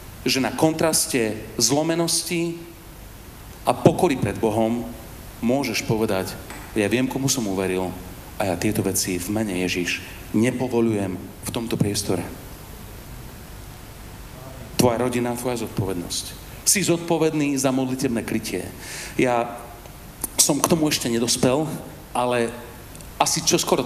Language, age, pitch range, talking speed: Slovak, 40-59, 95-125 Hz, 110 wpm